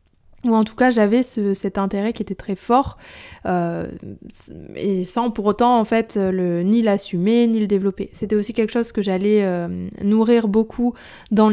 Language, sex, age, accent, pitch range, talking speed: French, female, 20-39, French, 185-220 Hz, 165 wpm